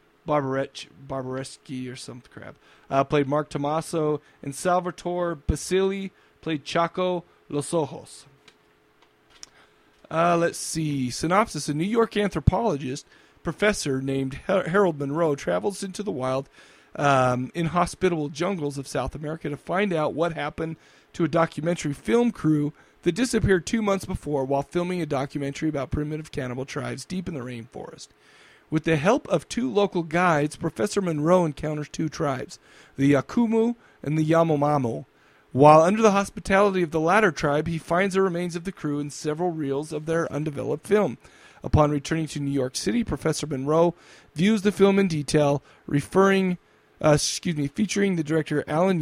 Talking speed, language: 150 wpm, English